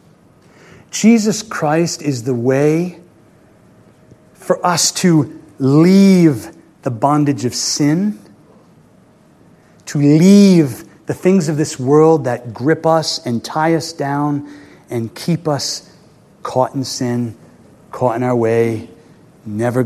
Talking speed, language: 115 wpm, English